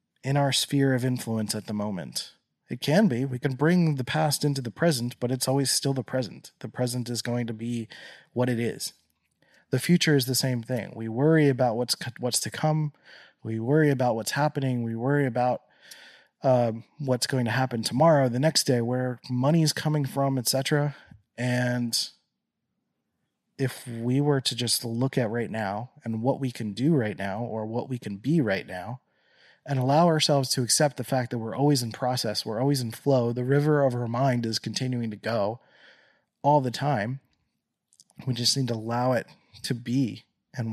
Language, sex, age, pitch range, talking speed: English, male, 30-49, 120-145 Hz, 195 wpm